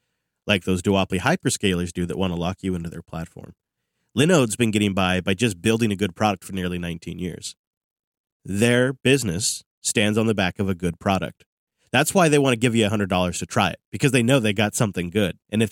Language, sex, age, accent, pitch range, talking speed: English, male, 30-49, American, 95-125 Hz, 220 wpm